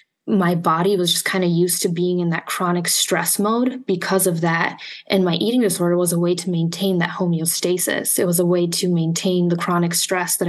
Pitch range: 175-195 Hz